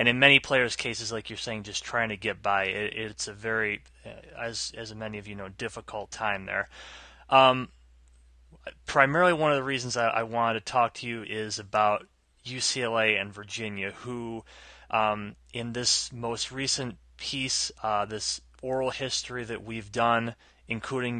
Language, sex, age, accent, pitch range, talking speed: English, male, 20-39, American, 110-130 Hz, 165 wpm